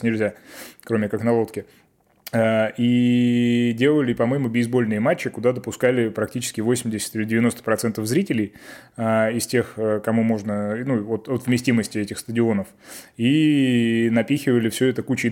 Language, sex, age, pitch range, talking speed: Russian, male, 20-39, 105-120 Hz, 120 wpm